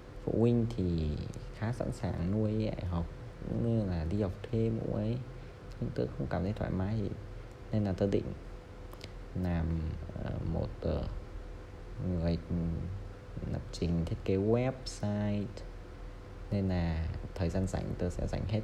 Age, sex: 20-39, male